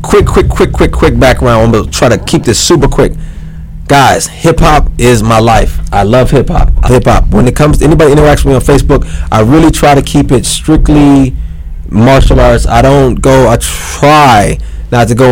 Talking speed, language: 190 wpm, English